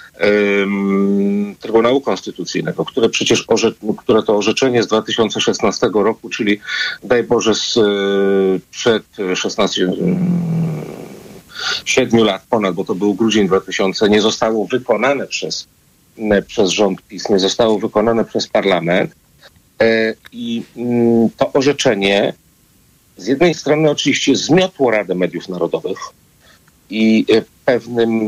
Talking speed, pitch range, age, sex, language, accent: 100 wpm, 95-115 Hz, 40-59, male, Polish, native